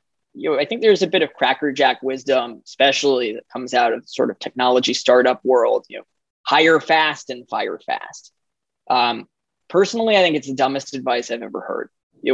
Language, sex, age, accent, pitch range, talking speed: English, male, 20-39, American, 130-180 Hz, 195 wpm